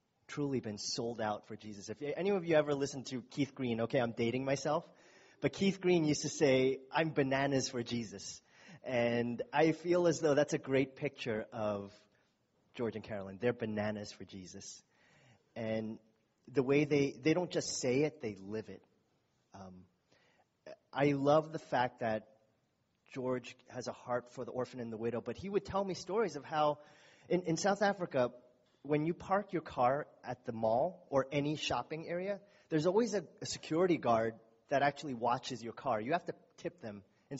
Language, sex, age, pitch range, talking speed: English, male, 30-49, 120-160 Hz, 185 wpm